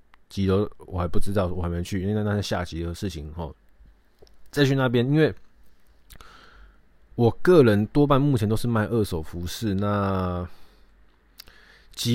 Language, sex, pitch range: Chinese, male, 90-110 Hz